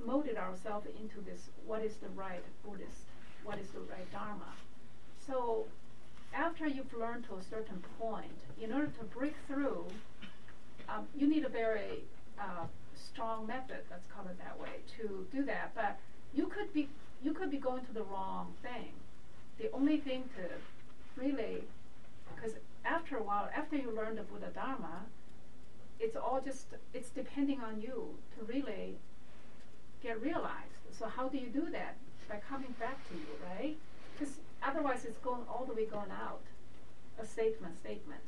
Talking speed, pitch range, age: 165 wpm, 220-275 Hz, 40-59